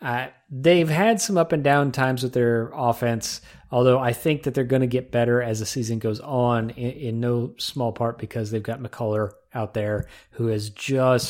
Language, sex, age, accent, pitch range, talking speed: English, male, 30-49, American, 110-130 Hz, 205 wpm